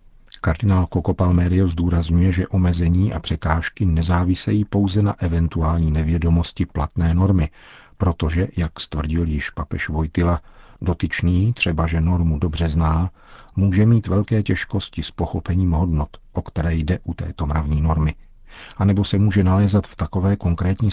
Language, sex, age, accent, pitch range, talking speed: Czech, male, 50-69, native, 85-100 Hz, 140 wpm